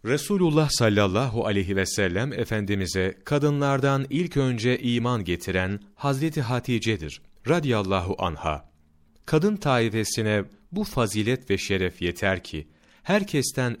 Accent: native